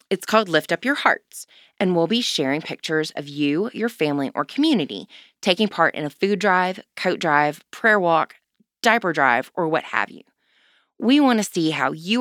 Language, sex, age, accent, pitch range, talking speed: English, female, 20-39, American, 145-200 Hz, 190 wpm